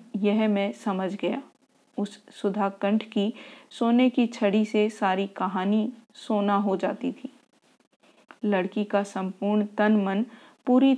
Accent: native